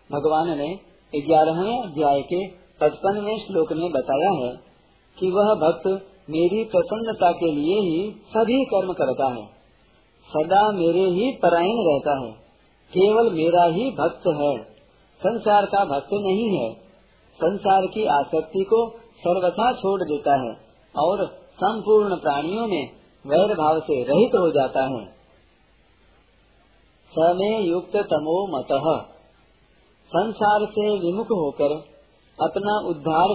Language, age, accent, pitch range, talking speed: Hindi, 50-69, native, 160-210 Hz, 120 wpm